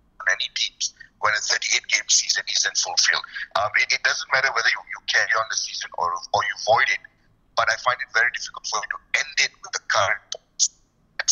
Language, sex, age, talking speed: English, male, 60-79, 195 wpm